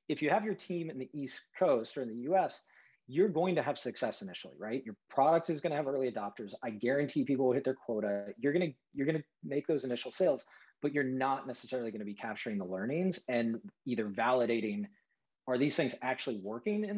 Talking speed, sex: 230 wpm, male